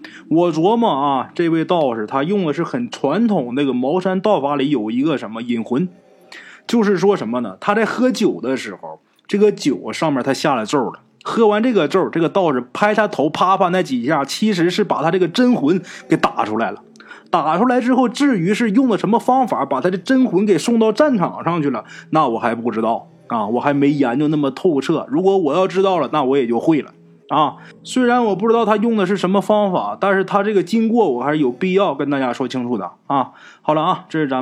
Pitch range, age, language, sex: 135-205 Hz, 20-39, Chinese, male